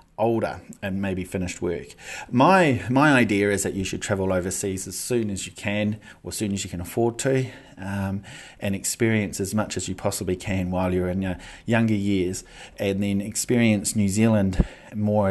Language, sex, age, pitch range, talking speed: English, male, 30-49, 95-110 Hz, 190 wpm